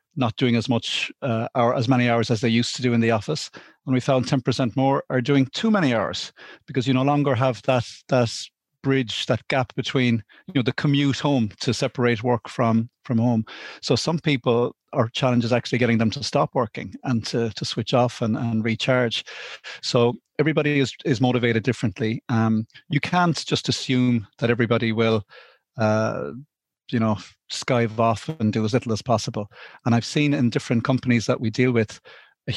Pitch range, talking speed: 115-135 Hz, 195 wpm